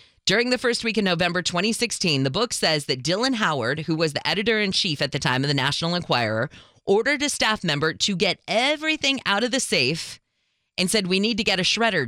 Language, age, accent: English, 30-49, American